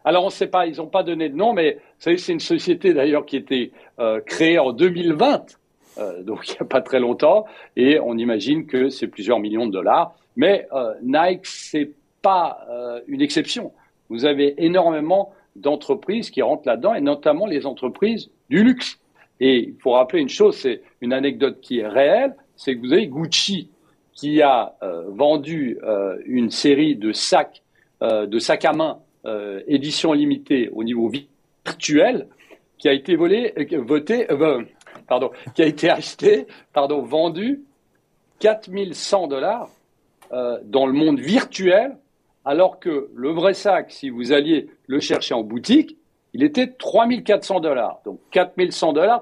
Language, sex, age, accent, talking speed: French, male, 60-79, French, 170 wpm